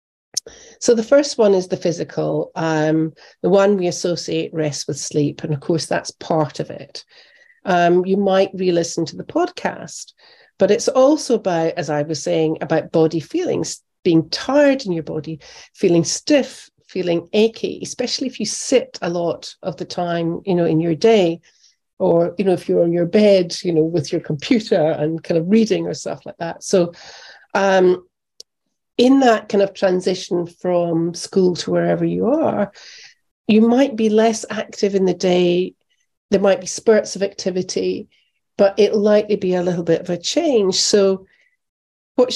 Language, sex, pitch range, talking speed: English, female, 170-225 Hz, 175 wpm